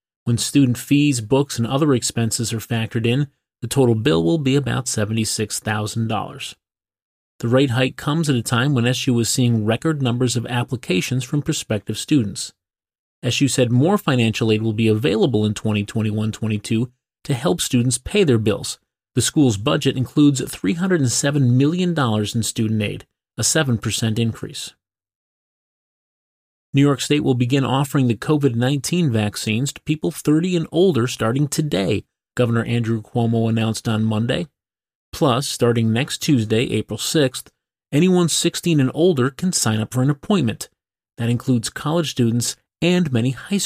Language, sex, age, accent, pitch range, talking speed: English, male, 30-49, American, 110-145 Hz, 150 wpm